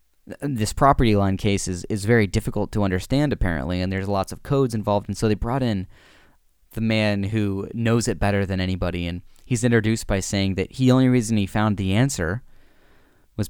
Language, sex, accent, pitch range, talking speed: English, male, American, 95-110 Hz, 195 wpm